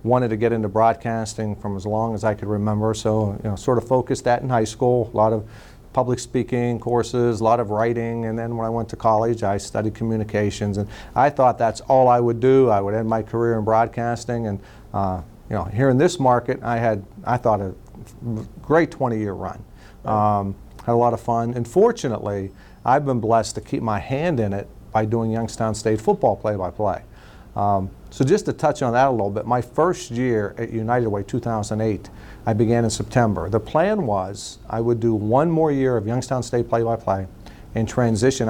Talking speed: 210 wpm